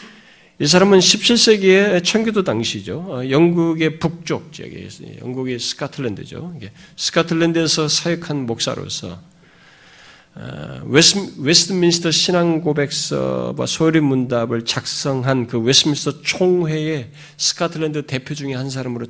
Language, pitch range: Korean, 130-175 Hz